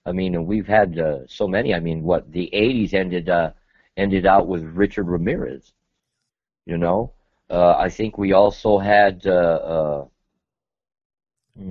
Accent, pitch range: American, 80-95 Hz